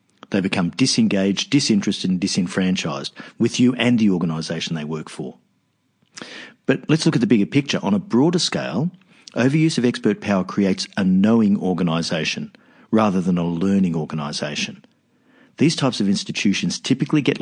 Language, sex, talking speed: English, male, 150 wpm